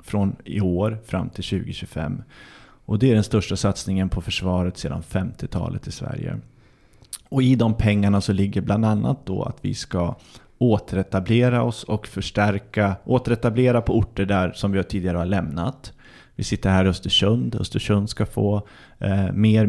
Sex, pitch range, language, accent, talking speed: male, 95-115 Hz, English, Swedish, 160 wpm